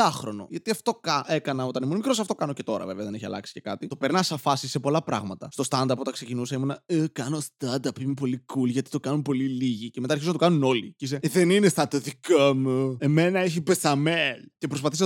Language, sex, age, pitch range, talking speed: Greek, male, 20-39, 135-195 Hz, 230 wpm